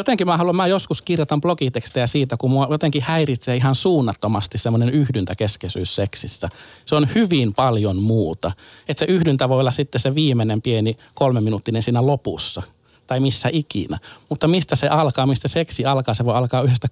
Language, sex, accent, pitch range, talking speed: Finnish, male, native, 110-145 Hz, 170 wpm